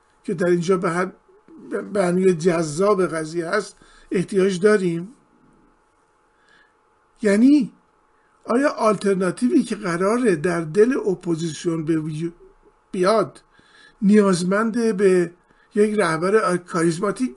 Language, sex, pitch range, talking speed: Persian, male, 180-240 Hz, 85 wpm